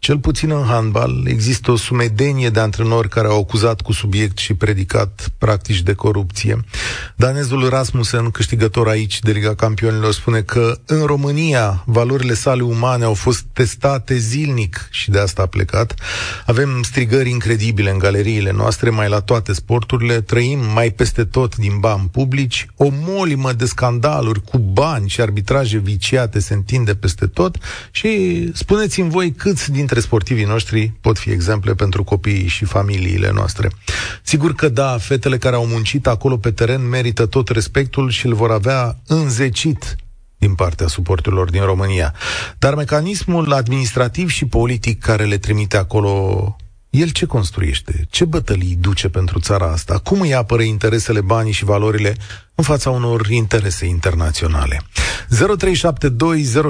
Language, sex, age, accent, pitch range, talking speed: Romanian, male, 30-49, native, 100-130 Hz, 150 wpm